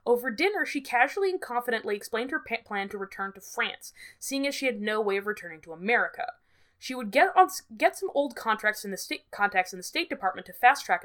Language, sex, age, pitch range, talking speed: English, female, 20-39, 195-275 Hz, 230 wpm